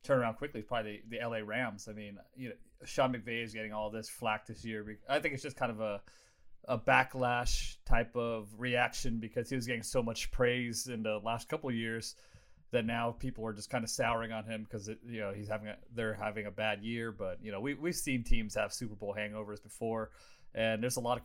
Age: 30-49